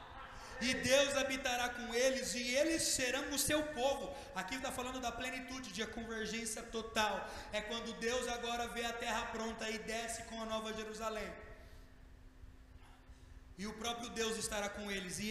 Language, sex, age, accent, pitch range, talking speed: Portuguese, male, 30-49, Brazilian, 200-255 Hz, 160 wpm